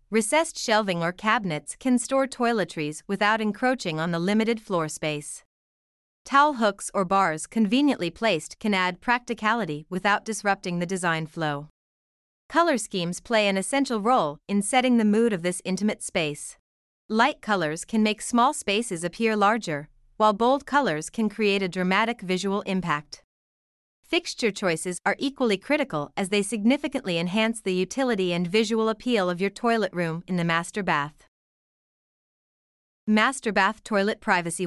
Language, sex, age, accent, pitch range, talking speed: English, female, 30-49, American, 175-230 Hz, 145 wpm